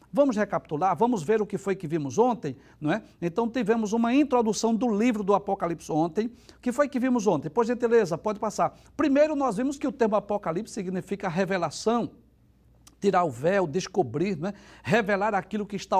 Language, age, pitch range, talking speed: Portuguese, 60-79, 180-245 Hz, 190 wpm